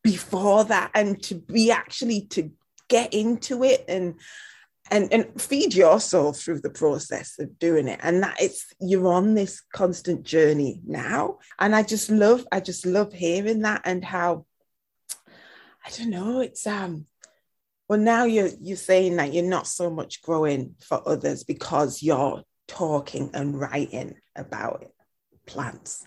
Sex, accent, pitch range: female, British, 165-215 Hz